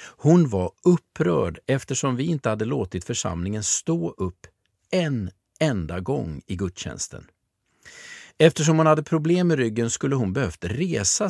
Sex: male